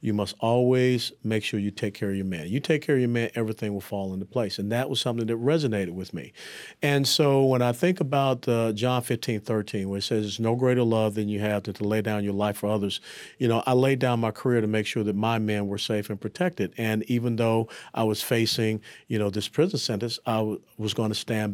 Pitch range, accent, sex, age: 105-125 Hz, American, male, 50-69